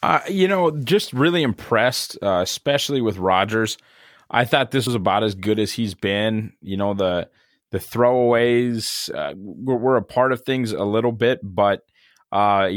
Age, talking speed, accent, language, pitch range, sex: 20-39, 170 wpm, American, English, 95-120 Hz, male